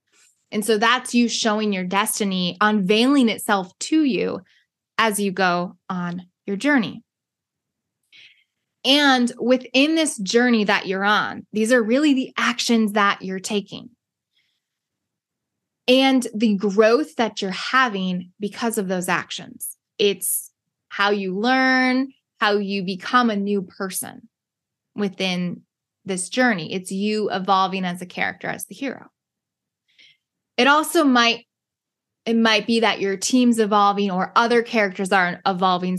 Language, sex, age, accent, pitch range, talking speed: English, female, 20-39, American, 190-235 Hz, 130 wpm